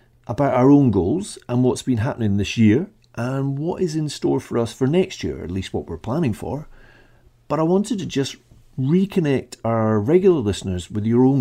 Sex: male